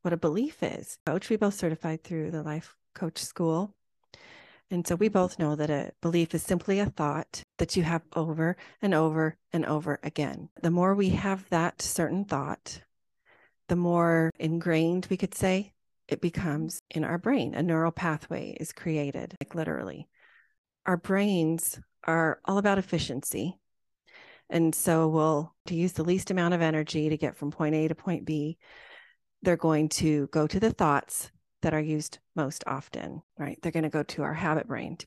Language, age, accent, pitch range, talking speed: English, 30-49, American, 155-180 Hz, 180 wpm